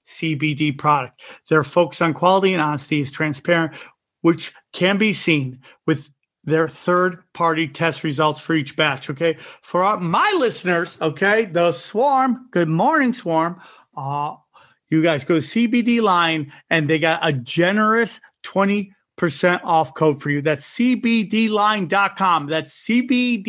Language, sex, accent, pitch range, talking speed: English, male, American, 150-190 Hz, 135 wpm